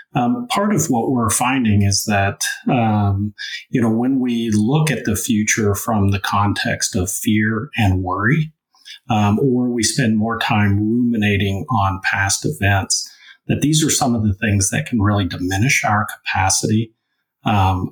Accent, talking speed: American, 160 wpm